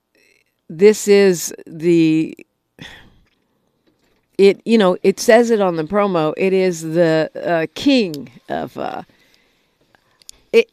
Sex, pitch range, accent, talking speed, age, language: female, 165-220 Hz, American, 110 wpm, 50-69, English